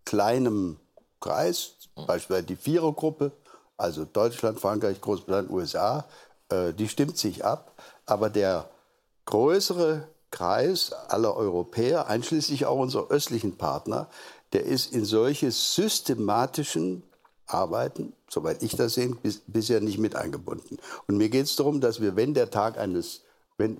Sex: male